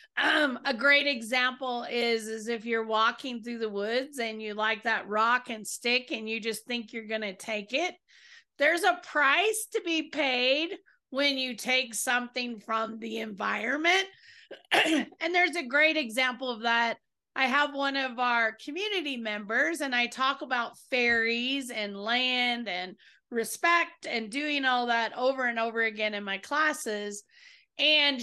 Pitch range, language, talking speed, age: 230-285 Hz, English, 160 wpm, 30-49